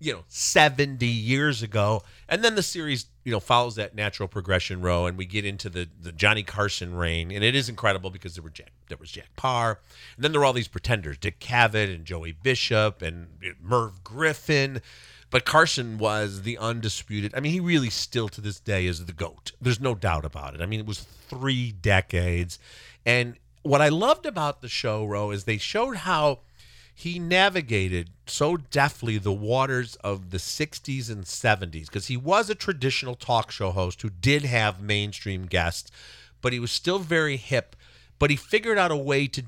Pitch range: 95-135 Hz